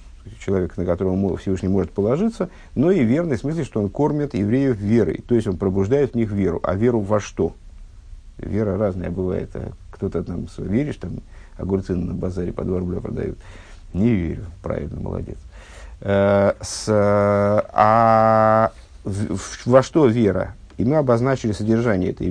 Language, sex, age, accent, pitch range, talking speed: Russian, male, 50-69, native, 95-125 Hz, 160 wpm